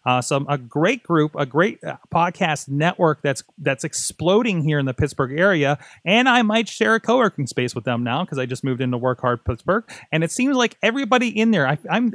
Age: 30-49